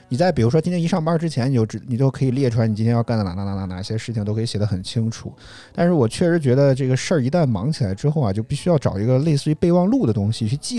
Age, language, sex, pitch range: 20-39, Chinese, male, 115-160 Hz